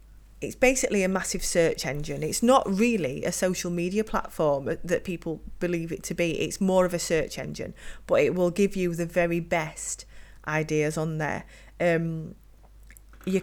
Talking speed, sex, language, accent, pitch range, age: 170 wpm, female, English, British, 170-215 Hz, 30-49